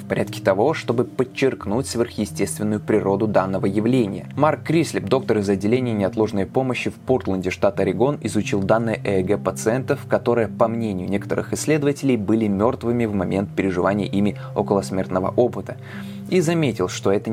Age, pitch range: 20-39, 100-125 Hz